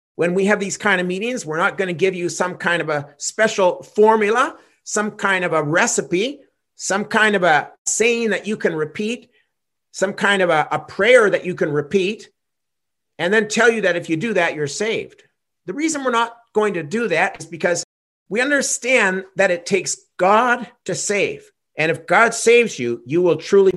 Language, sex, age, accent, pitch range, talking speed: English, male, 50-69, American, 175-240 Hz, 200 wpm